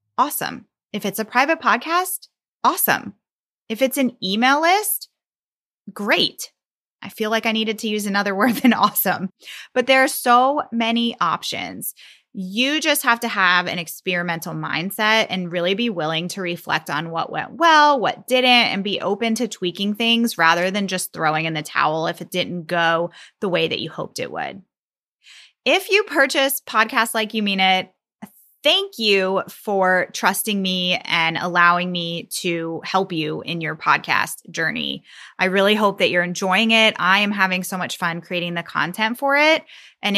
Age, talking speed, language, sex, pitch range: 20-39, 175 wpm, English, female, 180-240 Hz